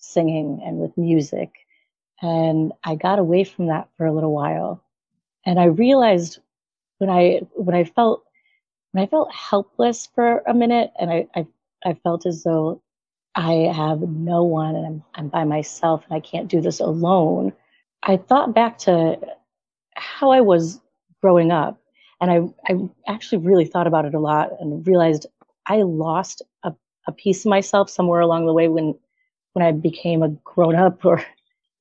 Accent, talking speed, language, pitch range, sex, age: American, 170 wpm, English, 160-195 Hz, female, 30-49